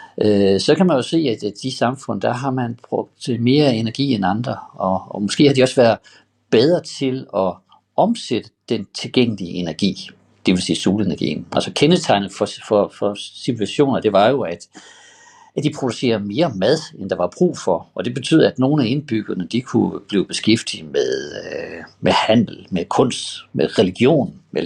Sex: male